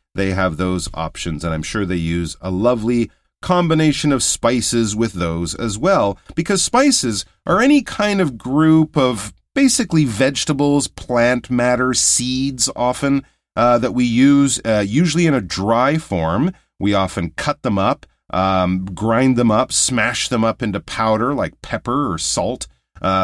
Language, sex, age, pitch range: Chinese, male, 40-59, 90-130 Hz